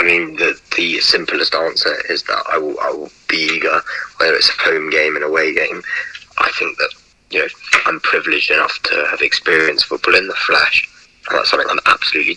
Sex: male